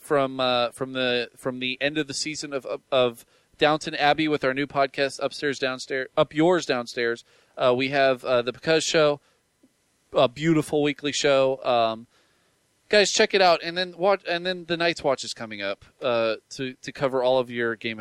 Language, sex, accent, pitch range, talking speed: English, male, American, 130-175 Hz, 195 wpm